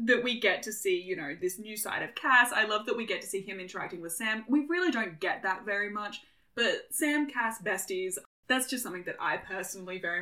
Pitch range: 210-280 Hz